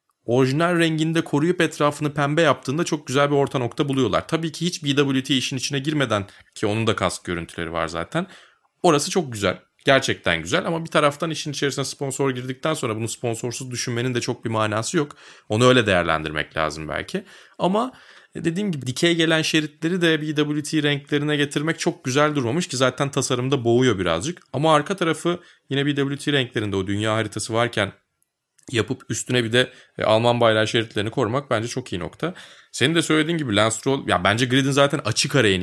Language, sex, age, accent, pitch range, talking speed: Turkish, male, 30-49, native, 110-150 Hz, 175 wpm